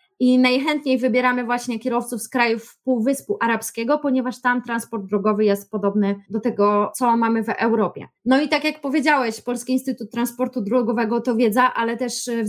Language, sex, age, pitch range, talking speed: Polish, female, 20-39, 220-255 Hz, 170 wpm